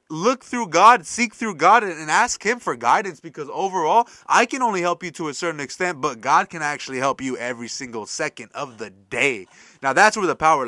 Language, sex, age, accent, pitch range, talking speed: English, male, 20-39, American, 150-210 Hz, 220 wpm